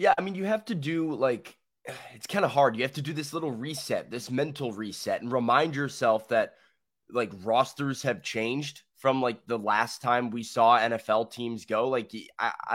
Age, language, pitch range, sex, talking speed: 20-39, English, 120-150 Hz, male, 200 wpm